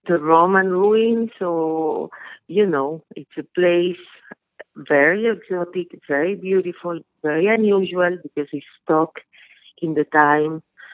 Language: English